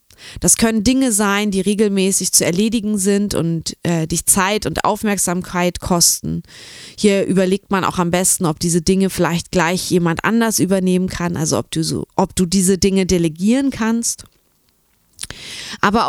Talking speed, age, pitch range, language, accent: 150 wpm, 20-39, 175-215 Hz, German, German